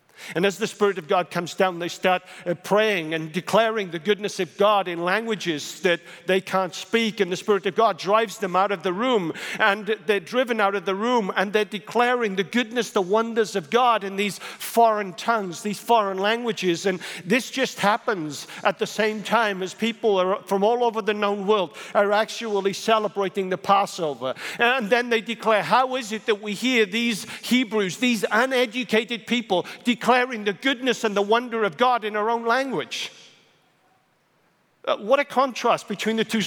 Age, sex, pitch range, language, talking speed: 50-69, male, 185-225 Hz, English, 190 wpm